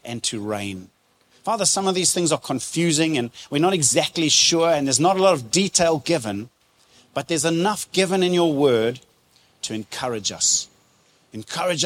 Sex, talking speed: male, 170 wpm